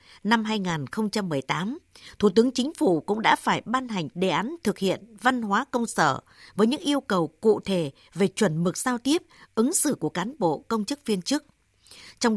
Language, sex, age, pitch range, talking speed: Vietnamese, female, 60-79, 180-250 Hz, 195 wpm